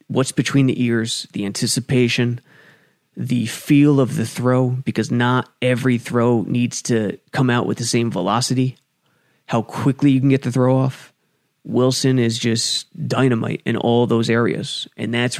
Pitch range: 120-135 Hz